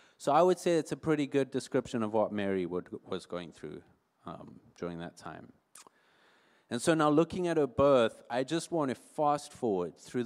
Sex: male